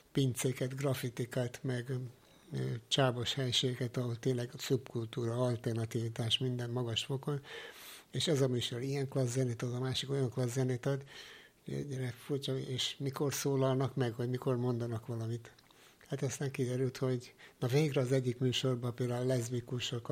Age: 60-79